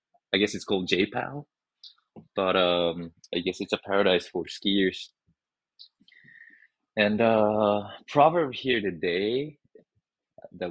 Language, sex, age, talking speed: English, male, 20-39, 120 wpm